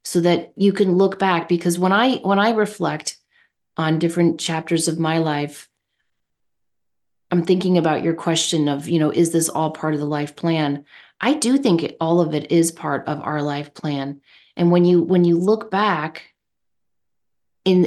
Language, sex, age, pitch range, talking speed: English, female, 30-49, 165-205 Hz, 185 wpm